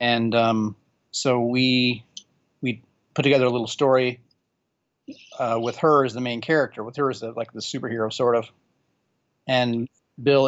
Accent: American